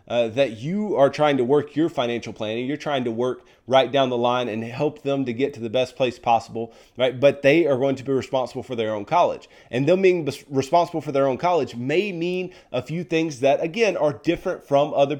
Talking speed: 235 wpm